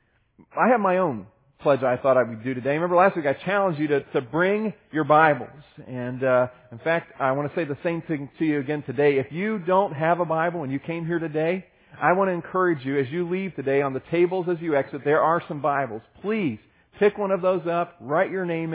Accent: American